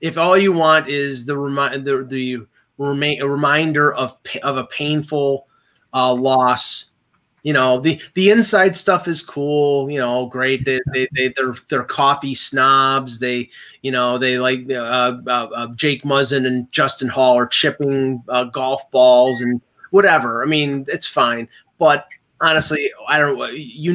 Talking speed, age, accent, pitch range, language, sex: 165 wpm, 30-49, American, 125-145 Hz, English, male